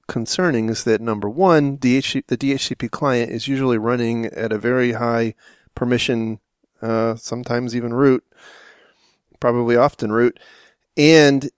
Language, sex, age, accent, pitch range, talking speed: English, male, 30-49, American, 115-130 Hz, 130 wpm